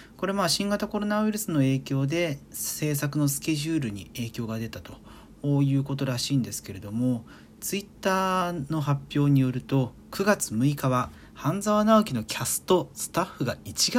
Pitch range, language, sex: 110-150 Hz, Japanese, male